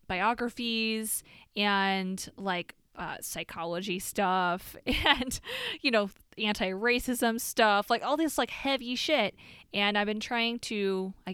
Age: 20-39